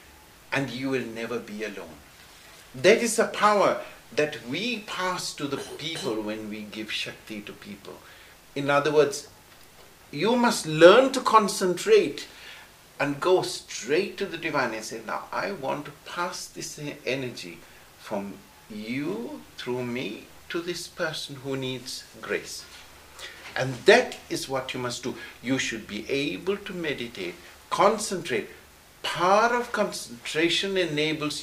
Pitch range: 130-200 Hz